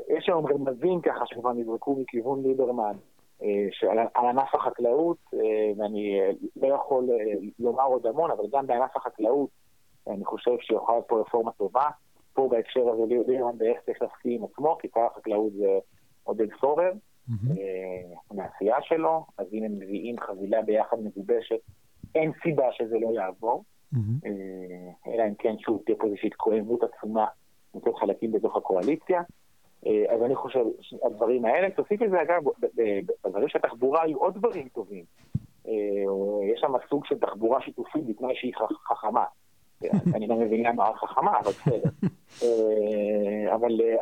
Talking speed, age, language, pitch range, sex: 135 wpm, 30-49, Hebrew, 110-170 Hz, male